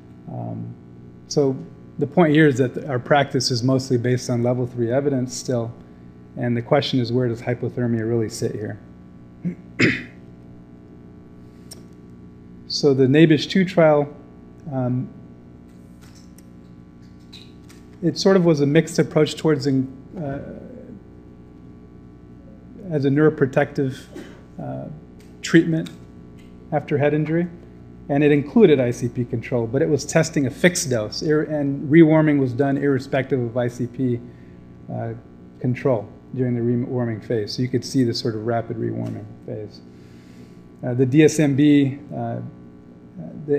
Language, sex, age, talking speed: English, male, 30-49, 125 wpm